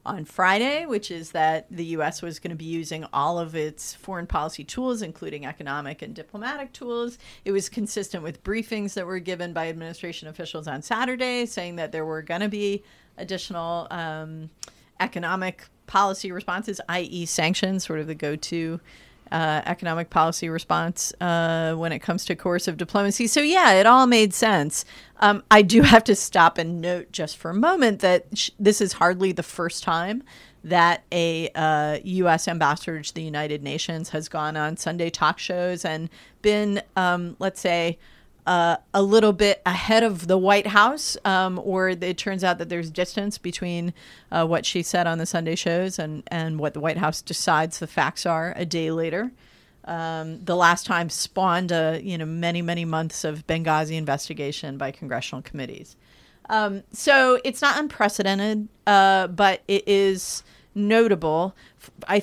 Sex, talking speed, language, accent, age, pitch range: female, 170 wpm, English, American, 40-59, 160-200 Hz